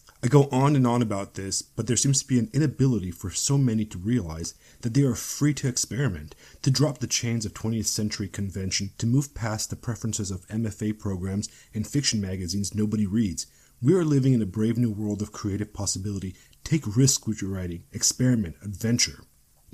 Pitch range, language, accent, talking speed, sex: 100-125 Hz, English, American, 195 wpm, male